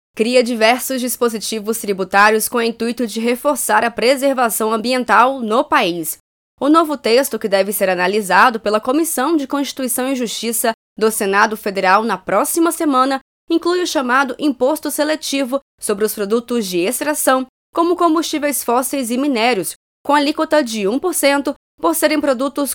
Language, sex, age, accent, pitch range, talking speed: Portuguese, female, 20-39, Brazilian, 215-280 Hz, 145 wpm